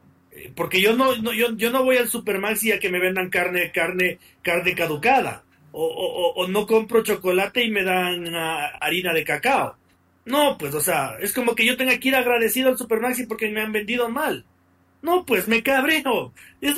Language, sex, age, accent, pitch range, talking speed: Spanish, male, 40-59, Mexican, 185-245 Hz, 205 wpm